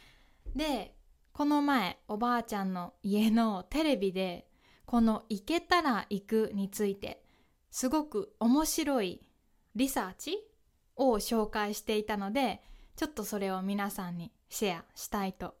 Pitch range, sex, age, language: 200-275 Hz, female, 20-39, Japanese